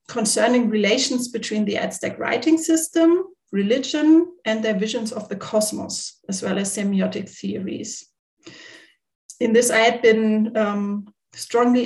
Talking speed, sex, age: 130 wpm, female, 40-59